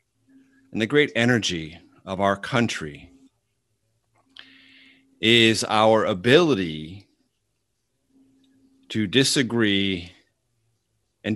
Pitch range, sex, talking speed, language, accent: 110-145 Hz, male, 70 wpm, English, American